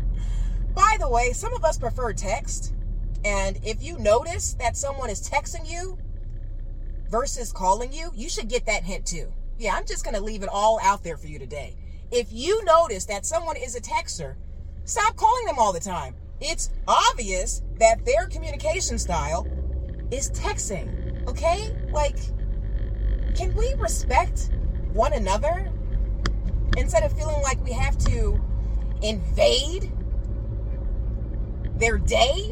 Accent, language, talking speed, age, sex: American, English, 140 wpm, 30-49, female